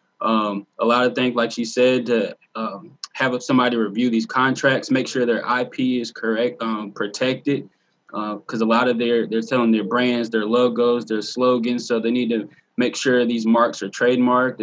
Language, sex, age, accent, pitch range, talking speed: English, male, 20-39, American, 110-125 Hz, 195 wpm